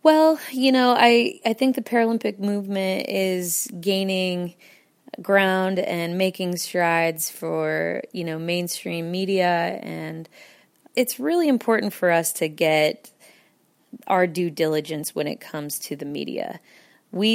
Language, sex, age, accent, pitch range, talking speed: English, female, 20-39, American, 160-195 Hz, 130 wpm